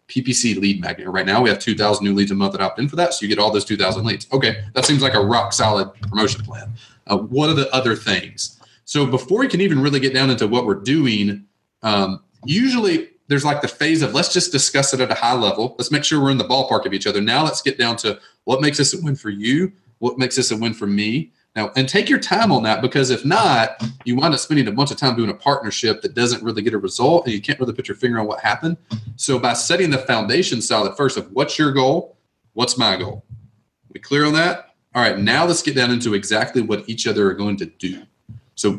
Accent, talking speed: American, 255 wpm